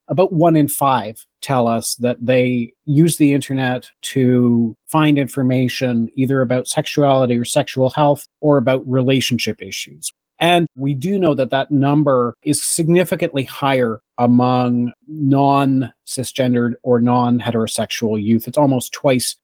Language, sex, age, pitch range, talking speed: English, male, 40-59, 120-150 Hz, 130 wpm